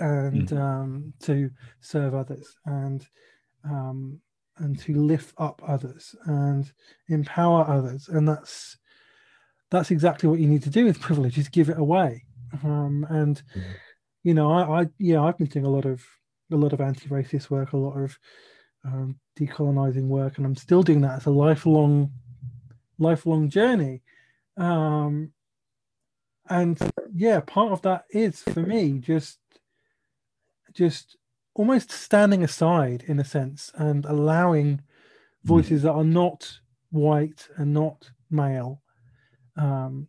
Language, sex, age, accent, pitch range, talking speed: English, male, 30-49, British, 135-175 Hz, 140 wpm